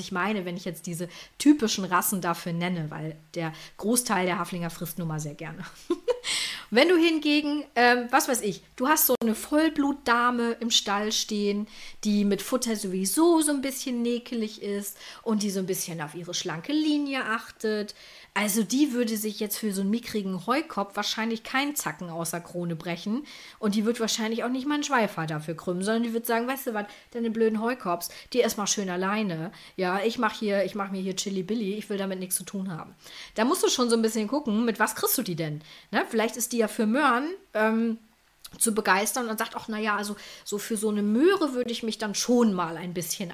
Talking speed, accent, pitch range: 215 wpm, German, 190-245 Hz